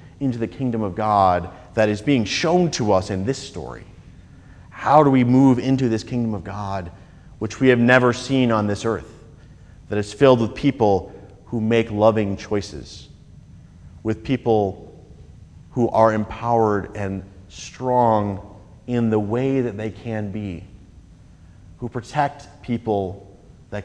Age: 40-59